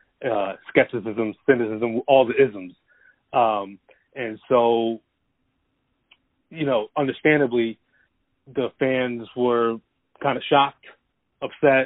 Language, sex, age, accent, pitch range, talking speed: English, male, 30-49, American, 115-135 Hz, 95 wpm